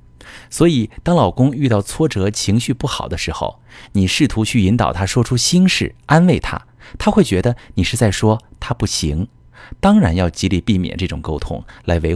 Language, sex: Chinese, male